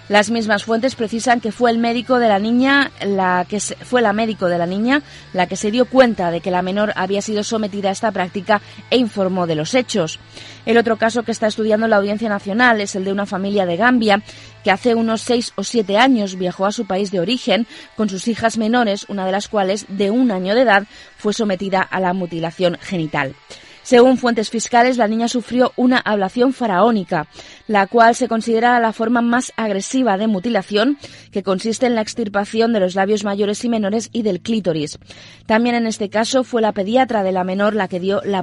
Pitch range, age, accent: 195-235 Hz, 20-39, Spanish